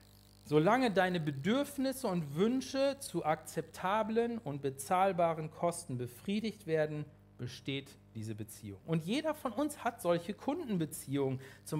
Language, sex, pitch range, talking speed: German, male, 125-195 Hz, 115 wpm